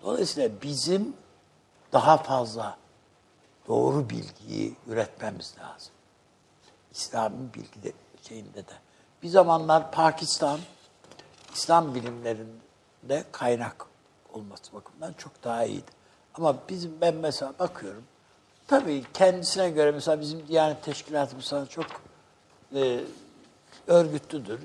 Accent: native